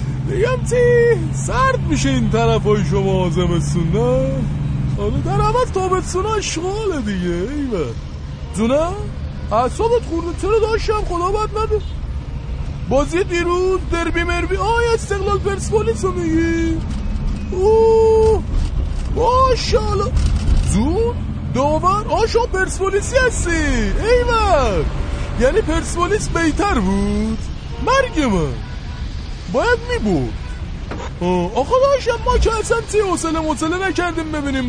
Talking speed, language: 95 wpm, Persian